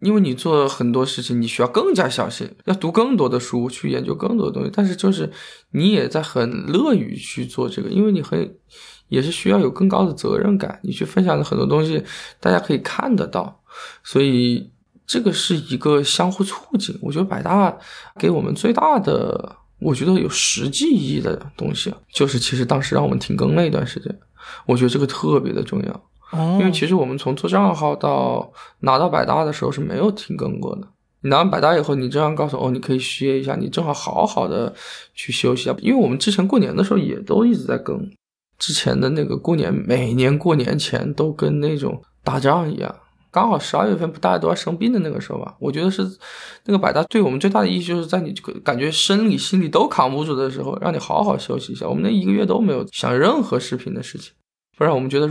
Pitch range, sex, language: 135-200 Hz, male, Chinese